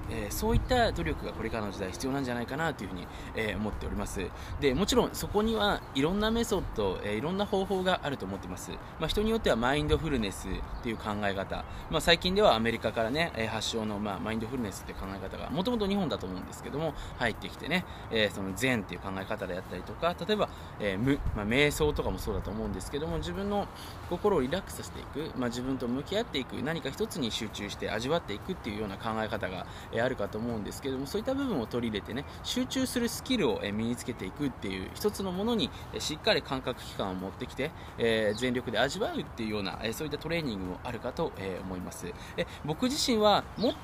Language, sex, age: Japanese, male, 20-39